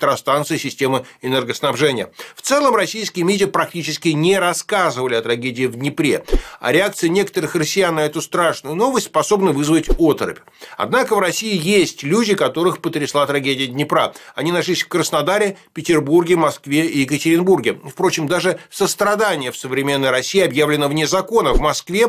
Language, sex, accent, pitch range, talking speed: Russian, male, native, 145-190 Hz, 145 wpm